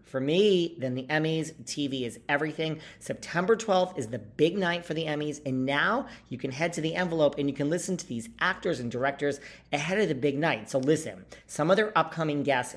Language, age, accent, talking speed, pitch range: English, 40-59, American, 215 wpm, 125-175 Hz